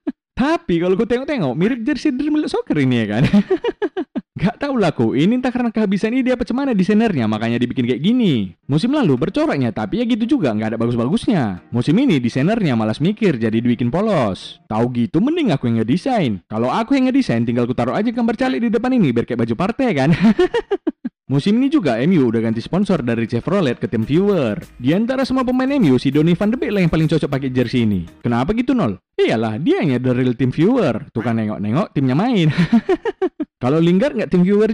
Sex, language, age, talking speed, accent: male, Indonesian, 20-39, 200 wpm, native